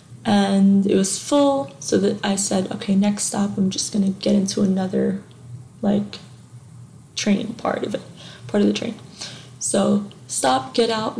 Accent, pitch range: American, 195-220 Hz